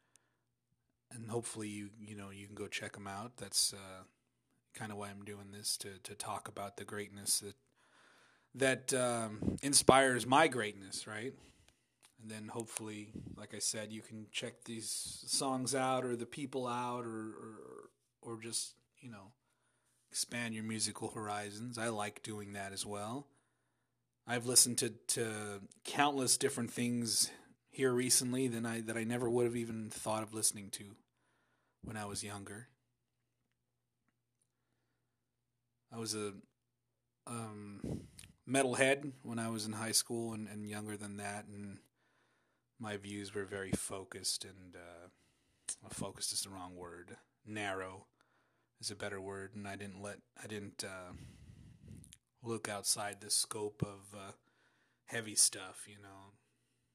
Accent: American